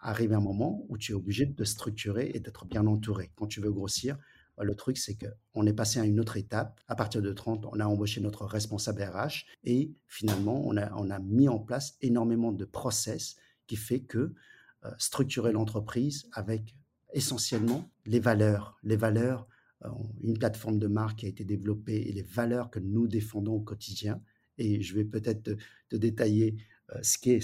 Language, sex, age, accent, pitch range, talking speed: French, male, 50-69, French, 105-125 Hz, 195 wpm